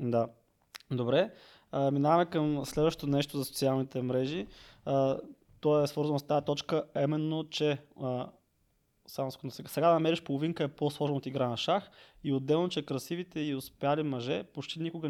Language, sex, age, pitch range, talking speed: Bulgarian, male, 20-39, 130-155 Hz, 160 wpm